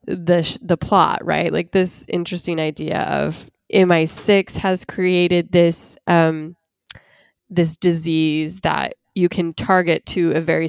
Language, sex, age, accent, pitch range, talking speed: English, female, 20-39, American, 165-195 Hz, 130 wpm